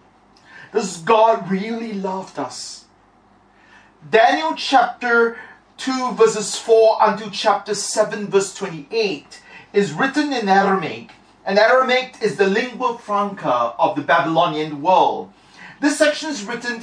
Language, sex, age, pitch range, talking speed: English, male, 40-59, 195-270 Hz, 120 wpm